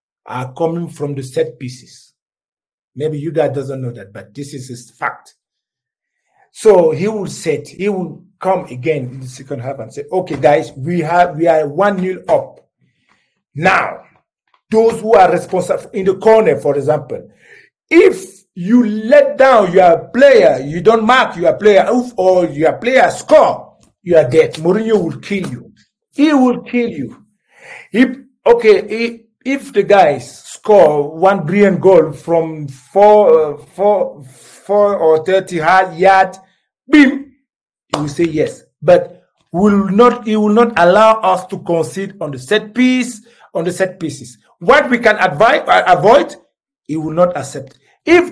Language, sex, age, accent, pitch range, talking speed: English, male, 50-69, Nigerian, 160-240 Hz, 160 wpm